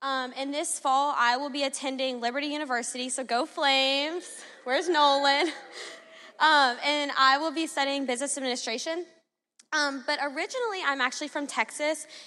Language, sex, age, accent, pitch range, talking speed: English, female, 10-29, American, 235-290 Hz, 145 wpm